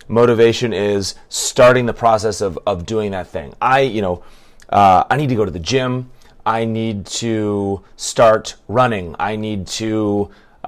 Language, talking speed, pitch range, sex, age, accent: English, 170 wpm, 100-125 Hz, male, 30-49, American